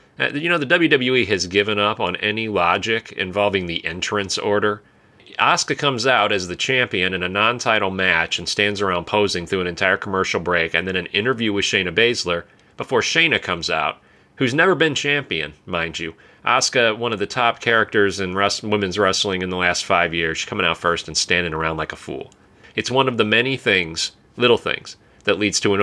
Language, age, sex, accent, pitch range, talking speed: English, 30-49, male, American, 90-115 Hz, 200 wpm